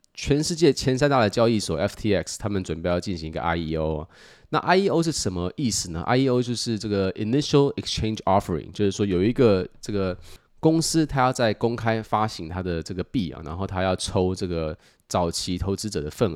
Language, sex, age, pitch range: Chinese, male, 20-39, 85-115 Hz